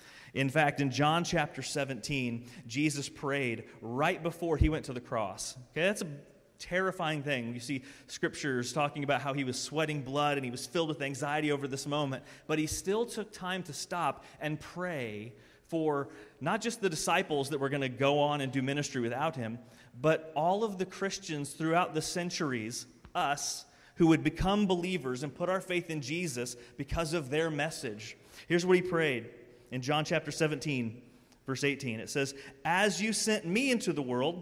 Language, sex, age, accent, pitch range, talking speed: English, male, 30-49, American, 130-165 Hz, 185 wpm